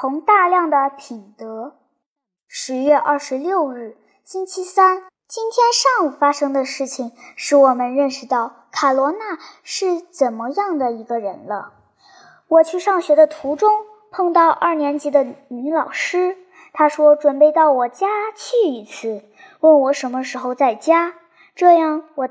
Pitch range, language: 270-360 Hz, Chinese